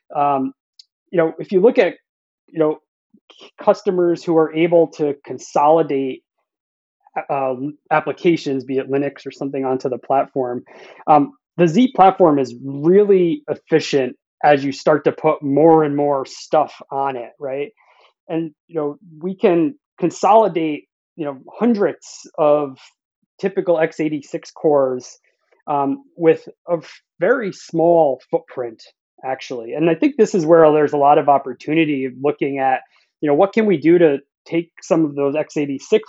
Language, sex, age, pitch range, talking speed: English, male, 30-49, 135-165 Hz, 150 wpm